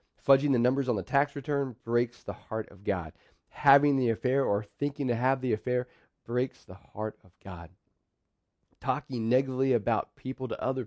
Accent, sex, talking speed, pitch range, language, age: American, male, 175 wpm, 100-125 Hz, English, 30-49